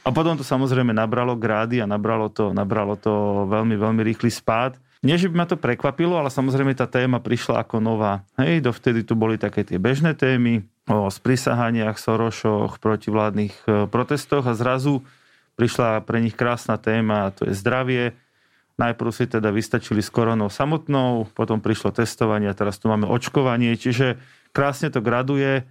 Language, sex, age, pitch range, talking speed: Slovak, male, 30-49, 110-130 Hz, 165 wpm